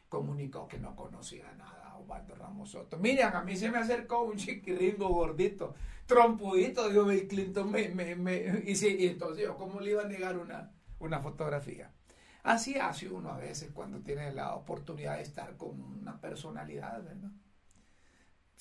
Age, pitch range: 60-79, 155-200 Hz